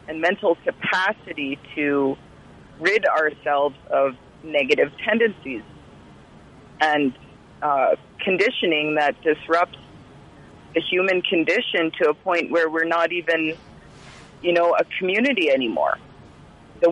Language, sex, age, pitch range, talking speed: English, female, 30-49, 155-180 Hz, 105 wpm